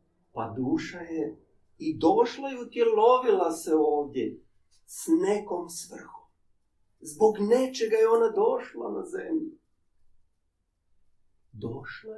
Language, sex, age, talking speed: Croatian, male, 40-59, 100 wpm